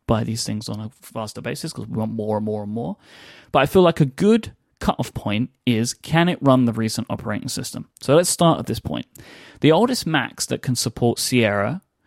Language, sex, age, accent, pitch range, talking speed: English, male, 30-49, British, 115-155 Hz, 220 wpm